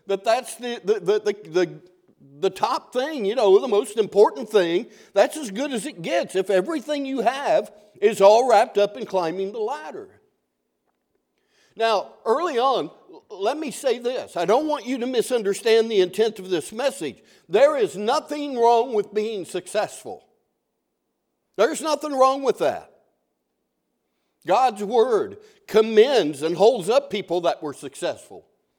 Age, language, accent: 60-79, English, American